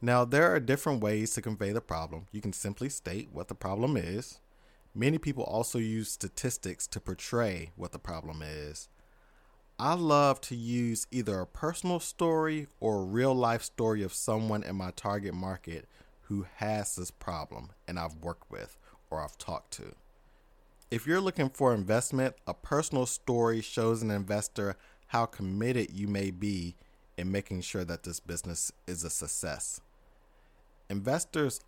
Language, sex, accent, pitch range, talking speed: English, male, American, 90-125 Hz, 160 wpm